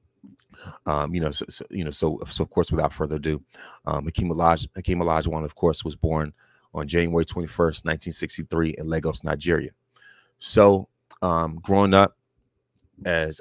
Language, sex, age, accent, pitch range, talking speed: English, male, 30-49, American, 75-95 Hz, 170 wpm